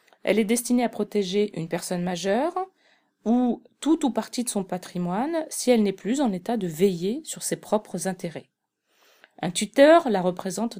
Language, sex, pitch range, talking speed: French, female, 190-250 Hz, 170 wpm